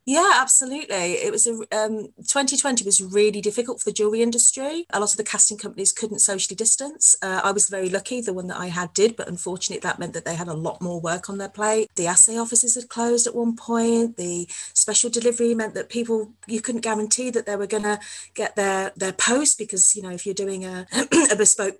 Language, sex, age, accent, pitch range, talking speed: English, female, 30-49, British, 200-250 Hz, 230 wpm